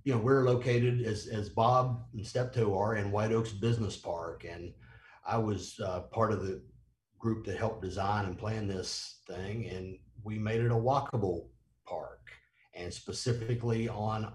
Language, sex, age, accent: English, male, 50-69, American